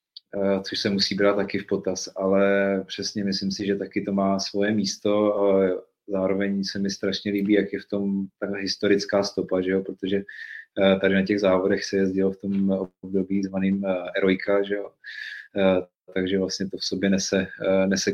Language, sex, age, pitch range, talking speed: Czech, male, 30-49, 95-105 Hz, 170 wpm